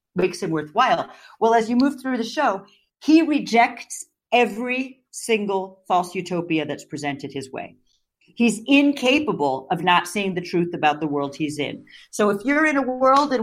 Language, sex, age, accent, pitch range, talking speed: English, female, 40-59, American, 170-240 Hz, 175 wpm